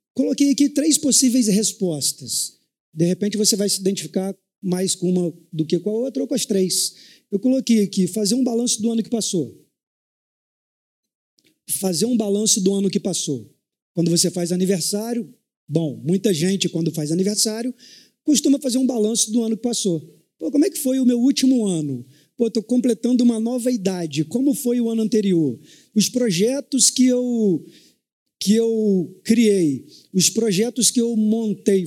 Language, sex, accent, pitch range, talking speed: Portuguese, male, Brazilian, 185-240 Hz, 170 wpm